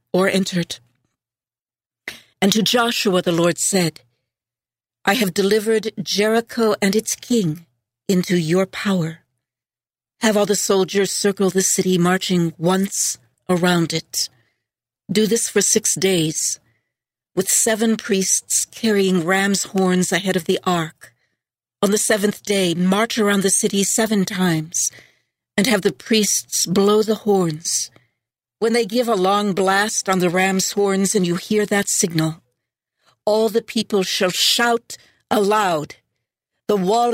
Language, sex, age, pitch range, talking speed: English, female, 60-79, 165-205 Hz, 135 wpm